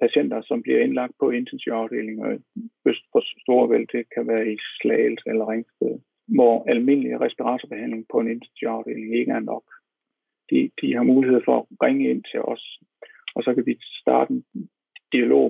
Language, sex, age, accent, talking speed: Danish, male, 60-79, native, 175 wpm